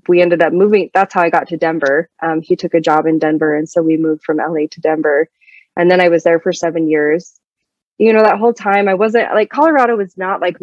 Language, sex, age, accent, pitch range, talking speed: English, female, 20-39, American, 165-195 Hz, 255 wpm